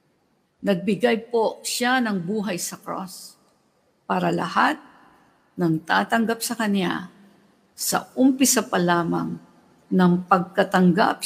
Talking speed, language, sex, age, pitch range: 100 wpm, English, female, 50-69, 180-235 Hz